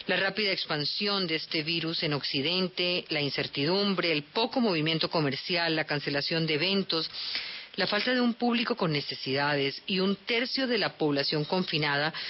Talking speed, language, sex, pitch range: 155 wpm, Spanish, female, 150-195 Hz